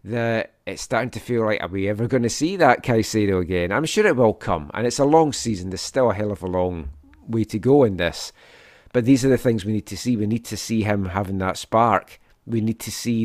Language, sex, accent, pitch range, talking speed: English, male, British, 100-120 Hz, 265 wpm